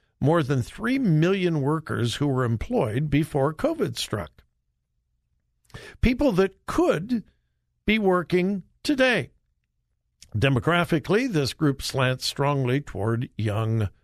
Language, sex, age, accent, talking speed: English, male, 60-79, American, 105 wpm